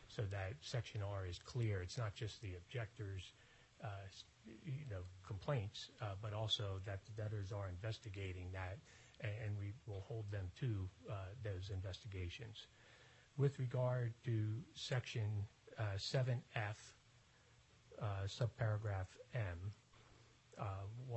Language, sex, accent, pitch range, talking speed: English, male, American, 105-120 Hz, 120 wpm